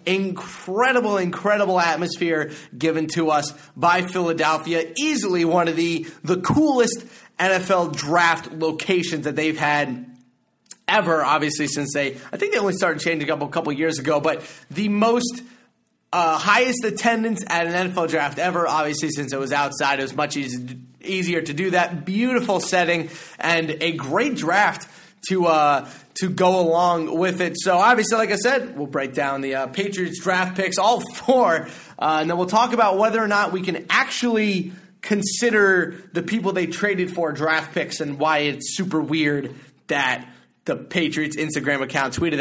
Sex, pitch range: male, 155-205 Hz